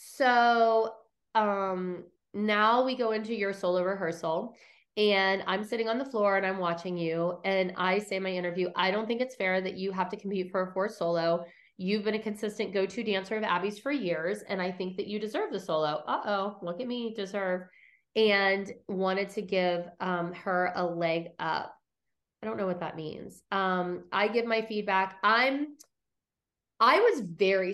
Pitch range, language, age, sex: 180-220 Hz, English, 30-49, female